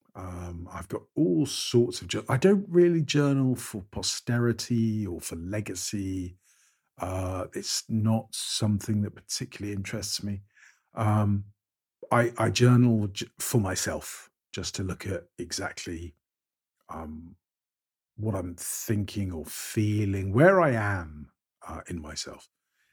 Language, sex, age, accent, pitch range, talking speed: English, male, 50-69, British, 90-115 Hz, 120 wpm